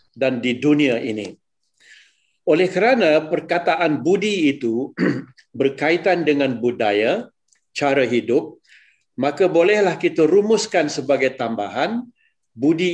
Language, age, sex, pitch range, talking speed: Malay, 50-69, male, 140-190 Hz, 95 wpm